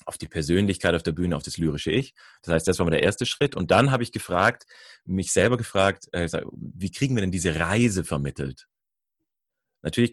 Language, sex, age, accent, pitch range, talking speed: German, male, 30-49, German, 85-120 Hz, 205 wpm